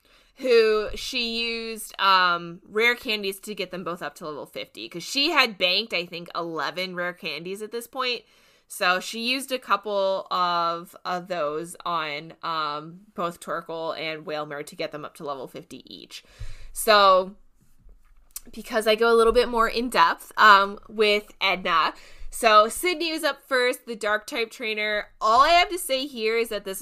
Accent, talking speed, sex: American, 175 wpm, female